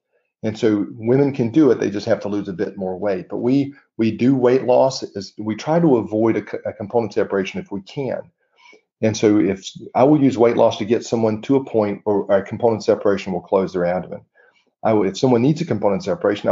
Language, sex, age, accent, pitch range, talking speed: English, male, 40-59, American, 100-120 Hz, 225 wpm